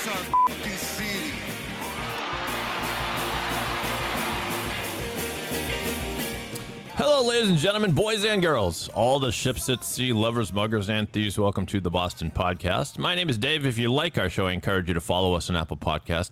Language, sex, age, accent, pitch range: English, male, 40-59, American, 90-130 Hz